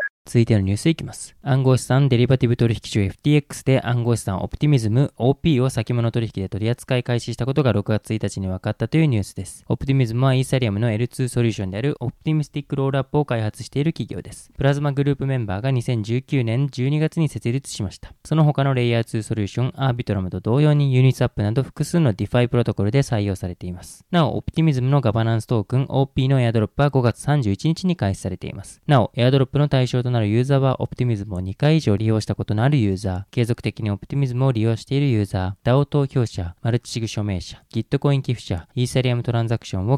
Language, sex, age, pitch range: Japanese, male, 20-39, 110-140 Hz